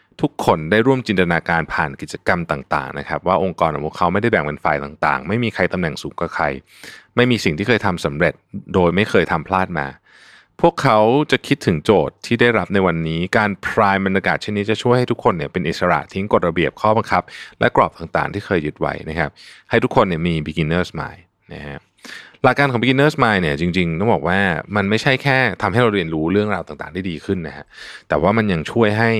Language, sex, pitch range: Thai, male, 85-120 Hz